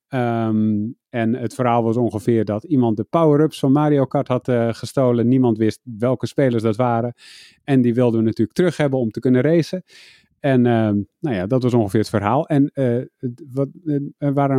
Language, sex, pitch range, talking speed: Dutch, male, 110-140 Hz, 200 wpm